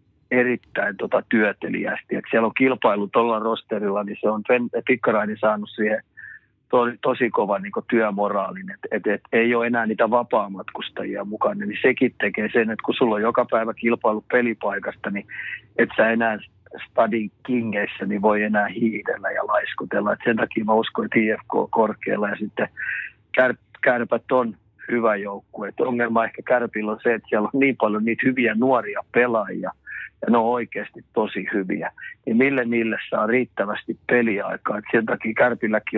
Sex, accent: male, native